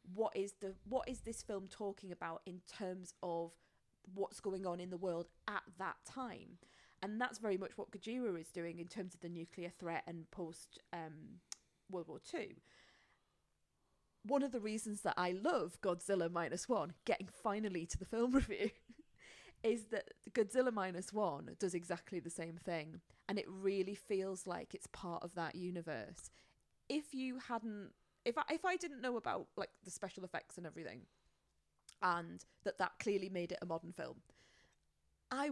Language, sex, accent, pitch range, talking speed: English, female, British, 175-215 Hz, 175 wpm